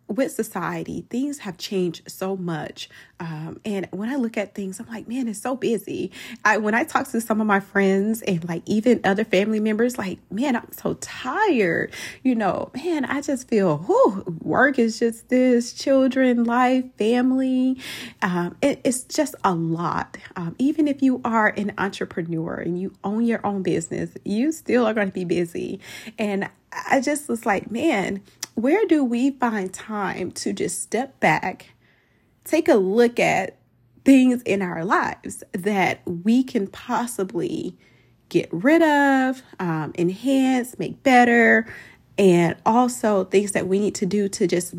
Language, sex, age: English, female, 30-49